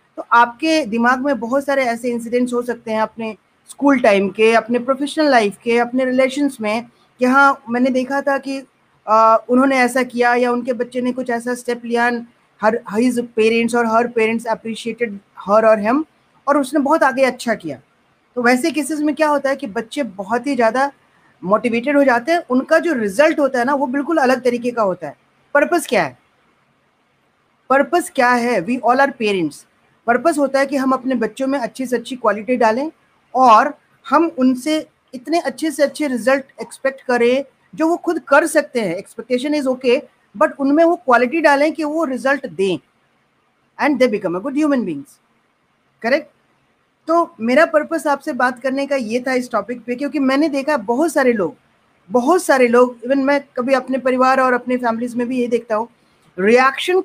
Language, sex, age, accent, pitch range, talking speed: Hindi, female, 30-49, native, 235-285 Hz, 190 wpm